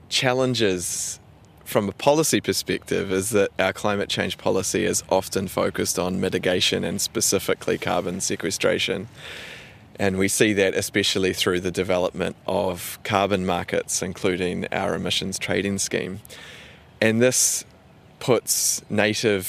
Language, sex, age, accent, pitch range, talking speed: English, male, 20-39, Australian, 95-105 Hz, 125 wpm